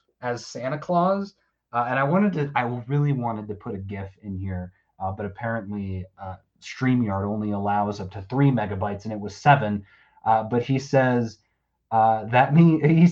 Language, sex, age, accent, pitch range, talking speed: English, male, 30-49, American, 100-130 Hz, 185 wpm